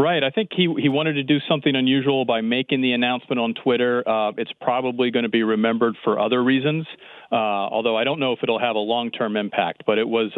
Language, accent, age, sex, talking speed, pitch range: English, American, 40-59, male, 245 wpm, 110-125 Hz